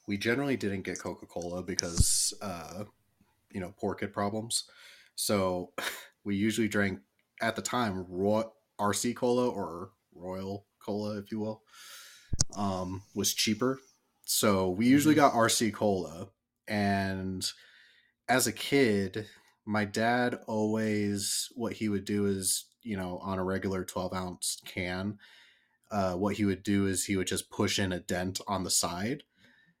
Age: 30-49